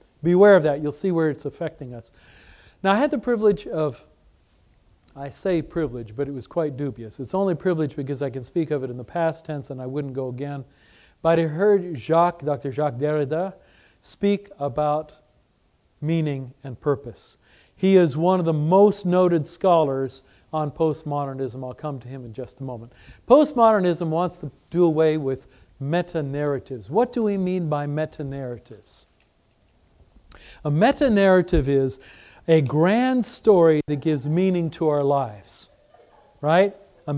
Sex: male